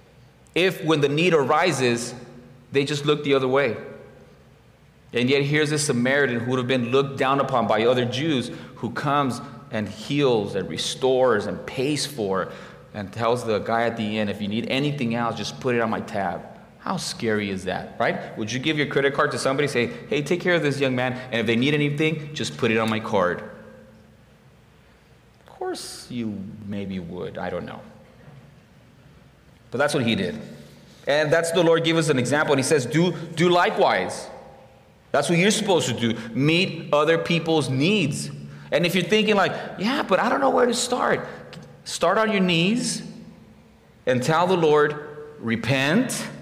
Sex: male